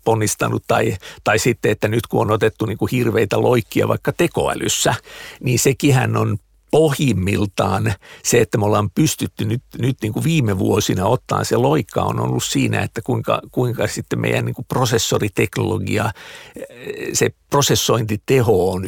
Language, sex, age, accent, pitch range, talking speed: Finnish, male, 50-69, native, 105-130 Hz, 150 wpm